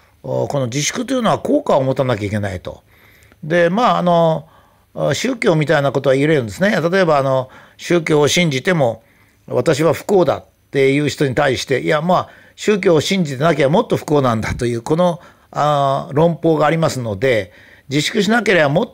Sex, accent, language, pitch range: male, native, Japanese, 130-185 Hz